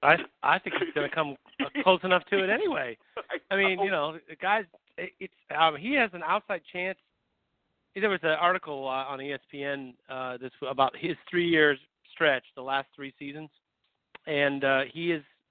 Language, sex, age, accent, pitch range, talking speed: English, male, 40-59, American, 135-175 Hz, 180 wpm